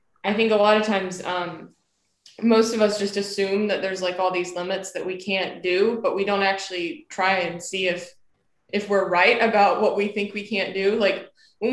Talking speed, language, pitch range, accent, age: 215 wpm, English, 175-200 Hz, American, 20-39